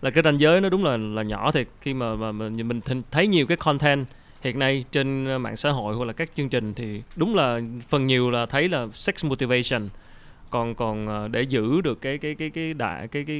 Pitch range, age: 115-155 Hz, 20-39